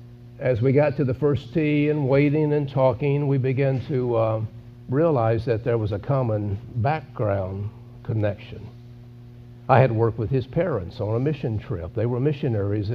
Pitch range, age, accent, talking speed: 120-155 Hz, 60-79, American, 165 wpm